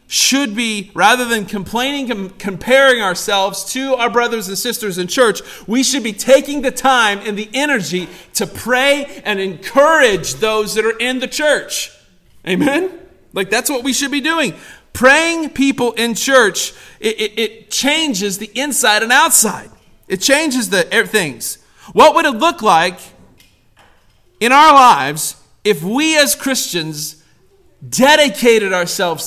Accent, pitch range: American, 190-265 Hz